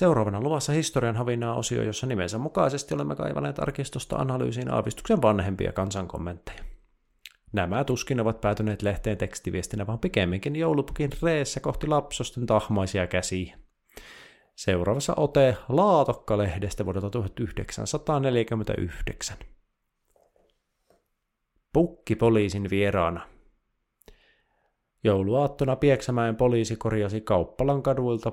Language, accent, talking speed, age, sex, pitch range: Finnish, native, 90 wpm, 30-49, male, 100-130 Hz